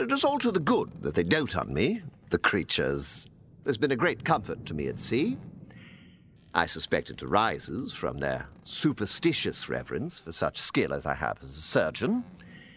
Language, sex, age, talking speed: English, male, 50-69, 185 wpm